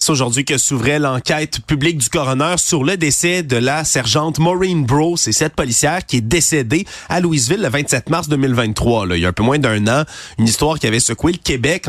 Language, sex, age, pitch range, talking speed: French, male, 30-49, 120-155 Hz, 220 wpm